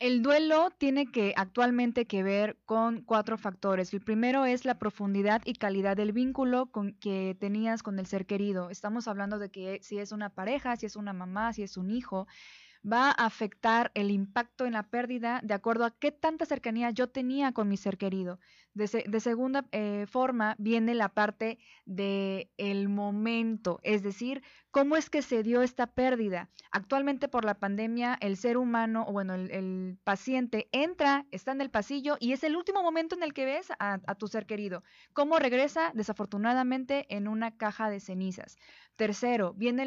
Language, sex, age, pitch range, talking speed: Spanish, female, 20-39, 205-250 Hz, 185 wpm